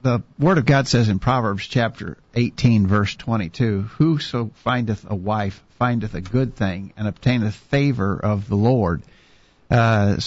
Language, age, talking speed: English, 50-69, 150 wpm